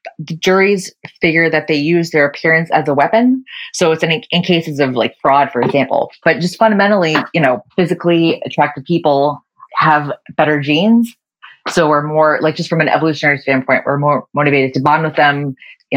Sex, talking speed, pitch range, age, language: female, 185 wpm, 145-180 Hz, 30-49, English